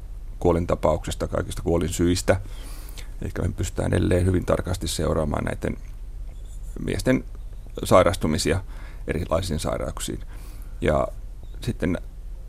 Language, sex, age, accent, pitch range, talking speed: Finnish, male, 30-49, native, 85-100 Hz, 90 wpm